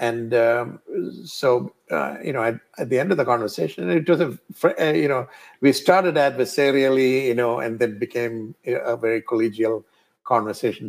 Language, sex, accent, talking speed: English, male, Indian, 165 wpm